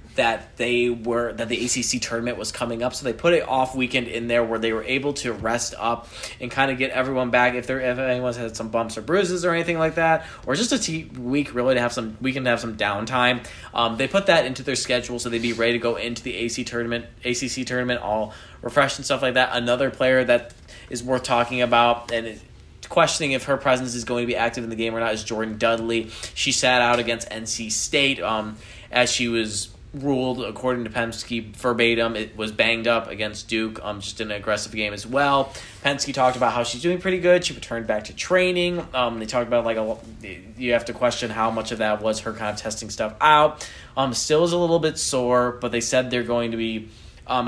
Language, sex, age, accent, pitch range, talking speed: English, male, 20-39, American, 115-130 Hz, 235 wpm